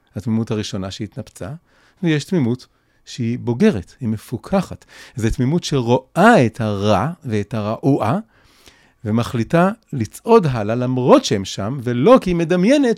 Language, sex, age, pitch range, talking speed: Hebrew, male, 30-49, 105-130 Hz, 120 wpm